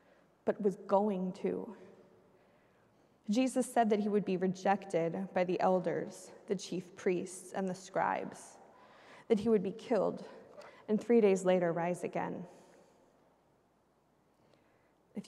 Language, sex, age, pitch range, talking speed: English, female, 20-39, 185-255 Hz, 120 wpm